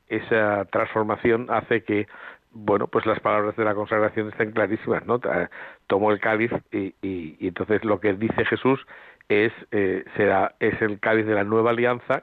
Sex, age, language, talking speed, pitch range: male, 60-79, Spanish, 170 wpm, 110-125 Hz